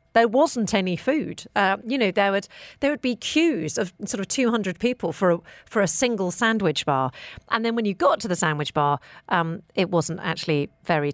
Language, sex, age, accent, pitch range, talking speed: English, female, 40-59, British, 160-230 Hz, 200 wpm